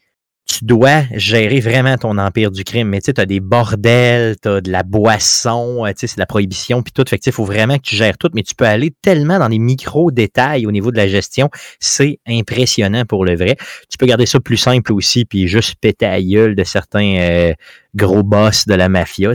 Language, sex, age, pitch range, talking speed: French, male, 30-49, 100-125 Hz, 235 wpm